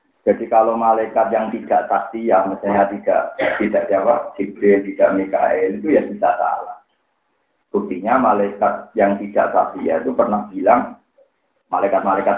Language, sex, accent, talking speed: Indonesian, male, native, 135 wpm